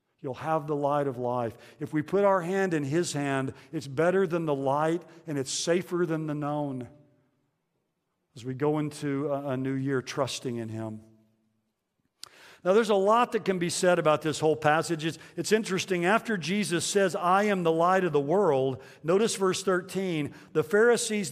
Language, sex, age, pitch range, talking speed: English, male, 50-69, 145-190 Hz, 185 wpm